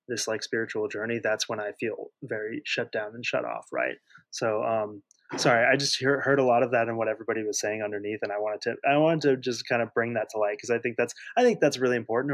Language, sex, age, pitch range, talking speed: English, male, 20-39, 115-155 Hz, 265 wpm